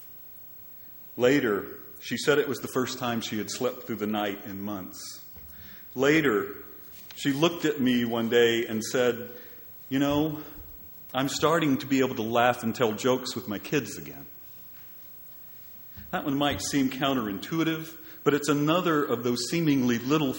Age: 40-59